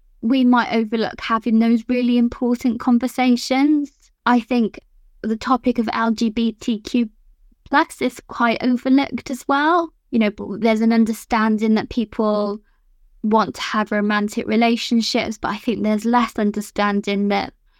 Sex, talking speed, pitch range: female, 130 wpm, 215-250 Hz